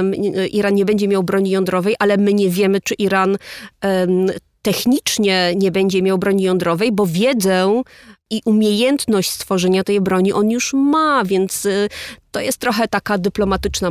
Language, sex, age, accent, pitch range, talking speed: Polish, female, 30-49, native, 185-210 Hz, 145 wpm